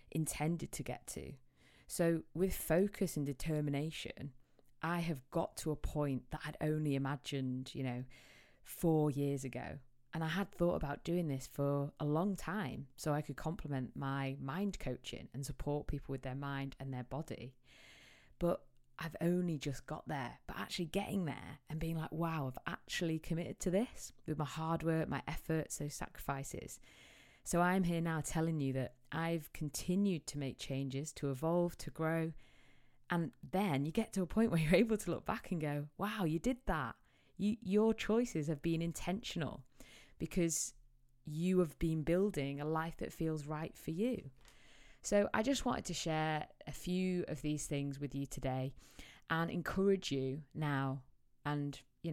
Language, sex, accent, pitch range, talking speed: English, female, British, 140-175 Hz, 175 wpm